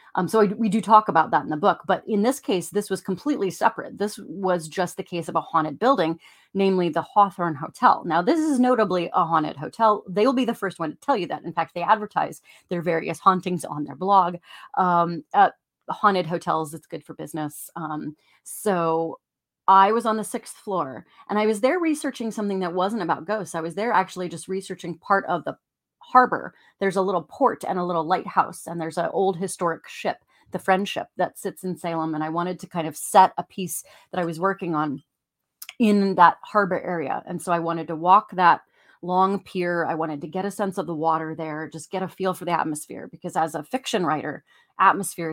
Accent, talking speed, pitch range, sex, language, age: American, 215 wpm, 170-205 Hz, female, English, 30-49